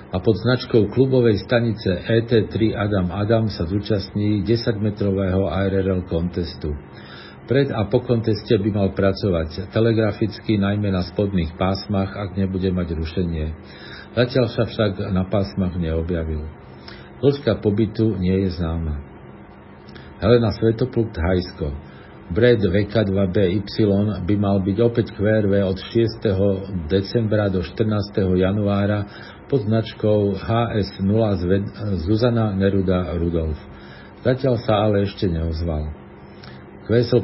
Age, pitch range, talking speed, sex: 50-69, 90-110 Hz, 110 wpm, male